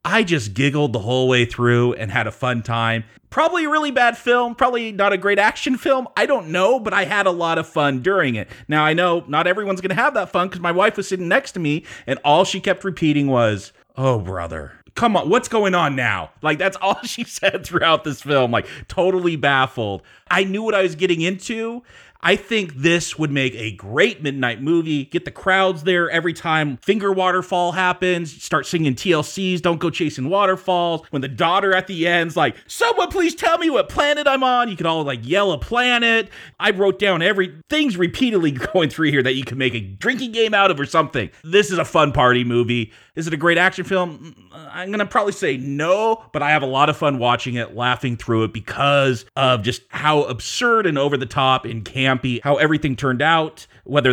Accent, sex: American, male